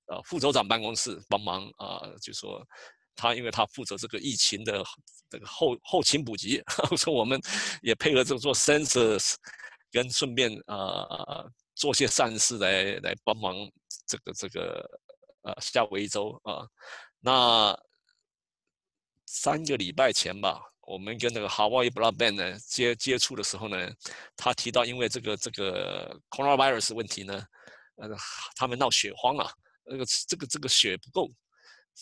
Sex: male